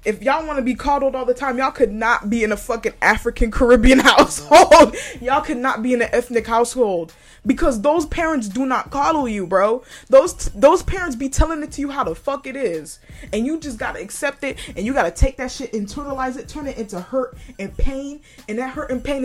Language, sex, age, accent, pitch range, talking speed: English, female, 20-39, American, 220-275 Hz, 235 wpm